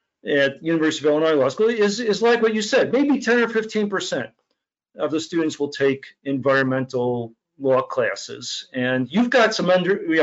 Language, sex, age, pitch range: English, male, 50-69, 135-205 Hz